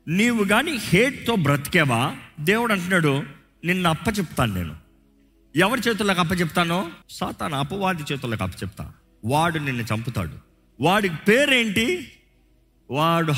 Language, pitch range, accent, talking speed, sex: Telugu, 120-185 Hz, native, 100 wpm, male